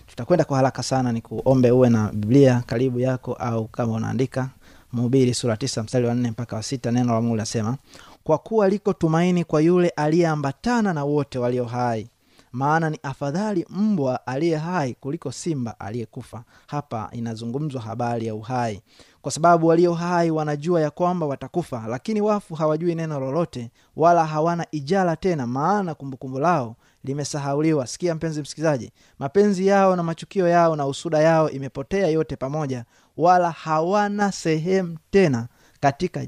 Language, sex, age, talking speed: Swahili, male, 20-39, 145 wpm